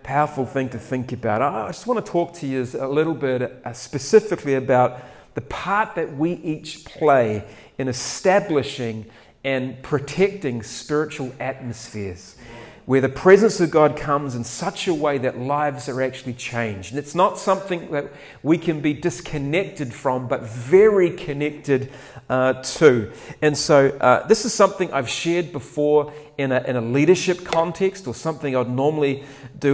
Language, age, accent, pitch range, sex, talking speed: English, 40-59, Australian, 125-155 Hz, male, 160 wpm